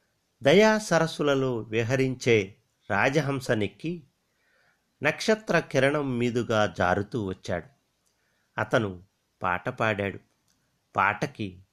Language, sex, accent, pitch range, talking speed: Telugu, male, native, 105-135 Hz, 50 wpm